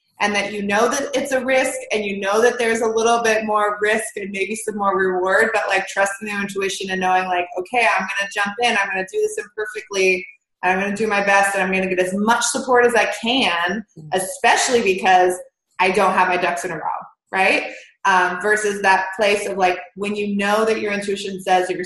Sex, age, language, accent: female, 20-39, English, American